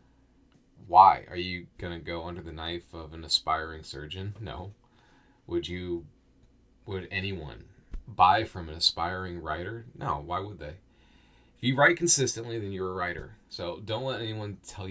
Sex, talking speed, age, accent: male, 160 wpm, 30-49, American